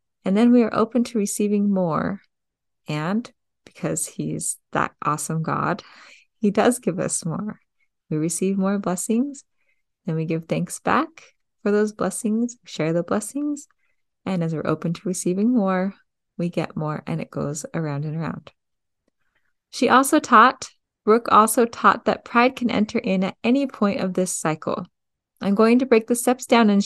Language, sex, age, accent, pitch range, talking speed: English, female, 30-49, American, 170-230 Hz, 170 wpm